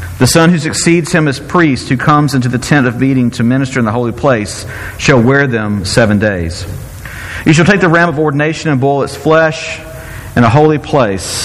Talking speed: 210 wpm